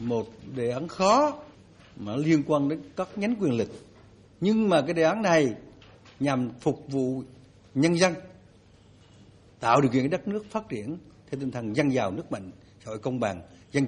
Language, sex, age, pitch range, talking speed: Vietnamese, male, 60-79, 110-165 Hz, 180 wpm